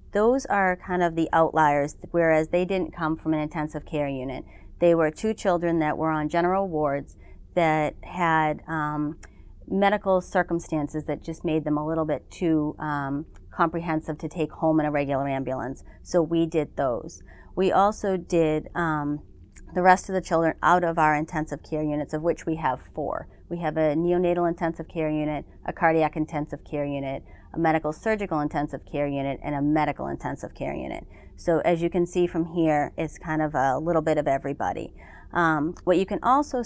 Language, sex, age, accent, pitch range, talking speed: English, female, 30-49, American, 150-175 Hz, 185 wpm